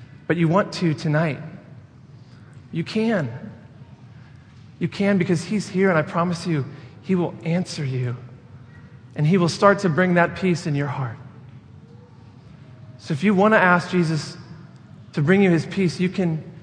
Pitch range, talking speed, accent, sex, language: 130-175 Hz, 160 wpm, American, male, English